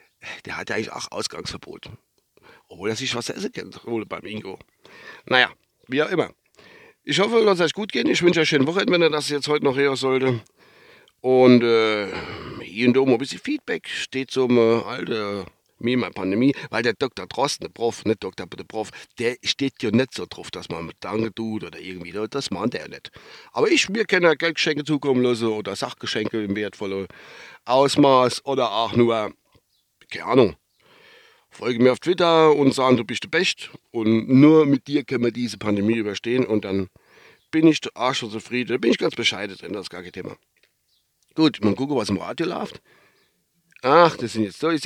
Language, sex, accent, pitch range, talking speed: German, male, German, 105-145 Hz, 195 wpm